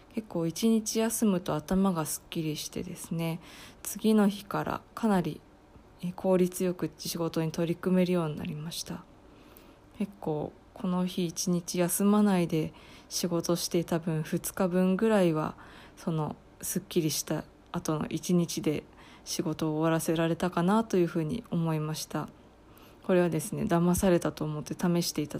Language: Japanese